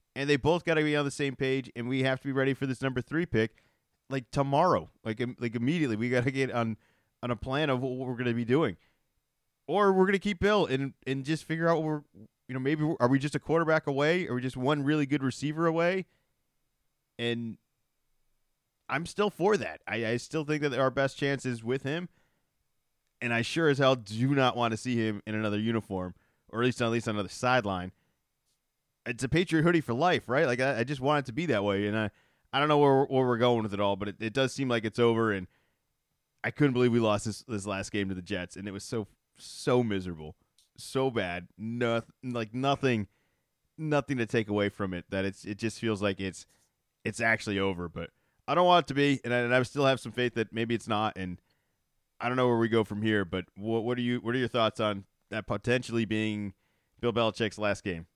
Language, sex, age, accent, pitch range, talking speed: English, male, 30-49, American, 110-140 Hz, 240 wpm